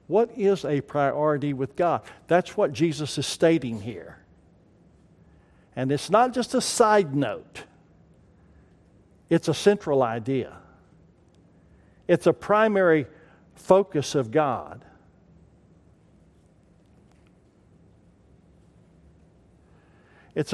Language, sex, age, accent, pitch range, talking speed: English, male, 60-79, American, 140-200 Hz, 90 wpm